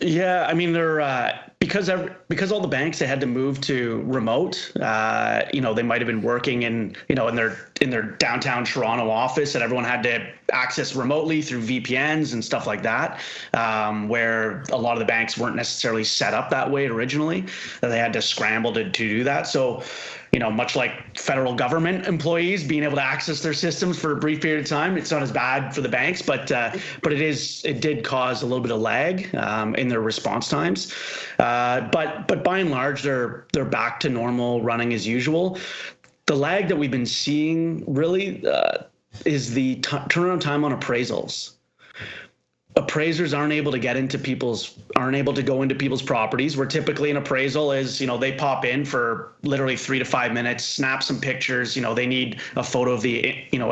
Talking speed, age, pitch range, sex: 210 wpm, 30-49, 120-155 Hz, male